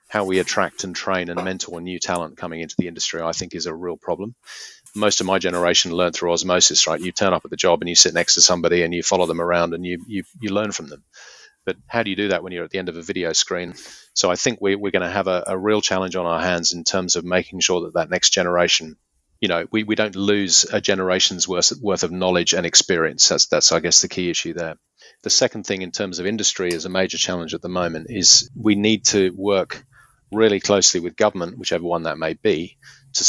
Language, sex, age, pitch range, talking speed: English, male, 40-59, 85-100 Hz, 255 wpm